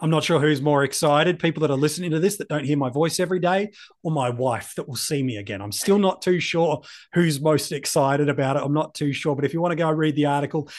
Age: 30-49